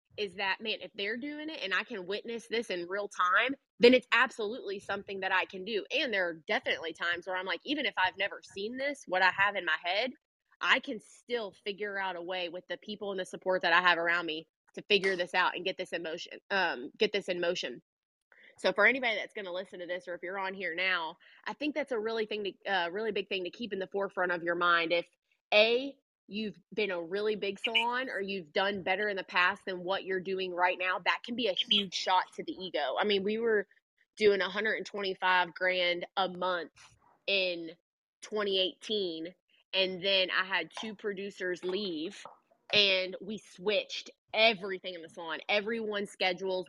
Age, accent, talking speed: 20-39, American, 215 wpm